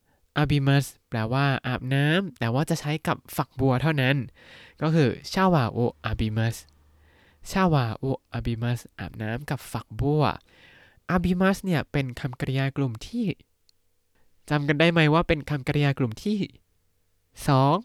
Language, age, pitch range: Thai, 20-39, 115-150 Hz